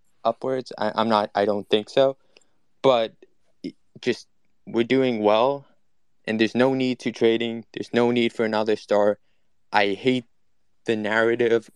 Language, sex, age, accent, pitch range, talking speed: English, male, 20-39, American, 110-130 Hz, 155 wpm